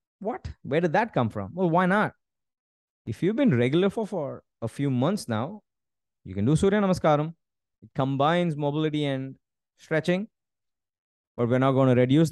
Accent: Indian